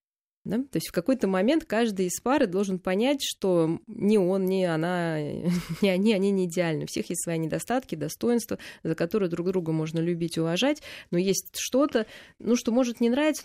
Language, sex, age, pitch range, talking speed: Russian, female, 20-39, 165-205 Hz, 185 wpm